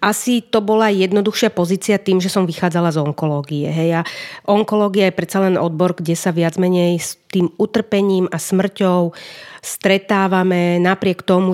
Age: 30-49